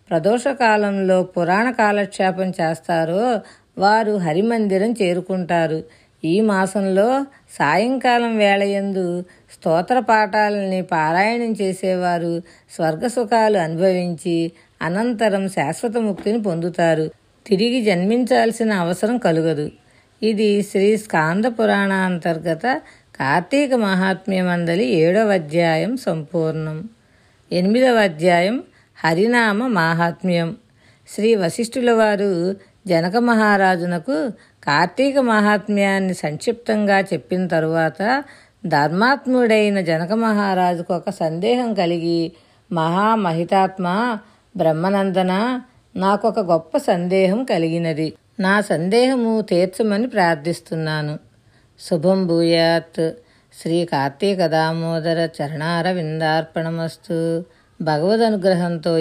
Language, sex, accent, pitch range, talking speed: Telugu, female, native, 165-215 Hz, 75 wpm